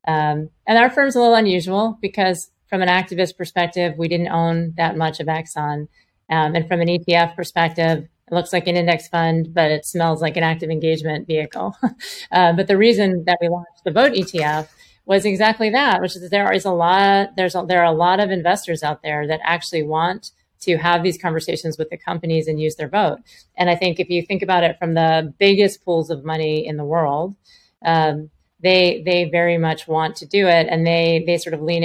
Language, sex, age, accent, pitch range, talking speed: English, female, 30-49, American, 160-185 Hz, 215 wpm